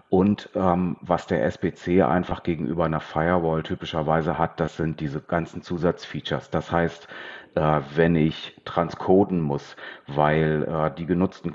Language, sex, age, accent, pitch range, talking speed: German, male, 40-59, German, 80-90 Hz, 140 wpm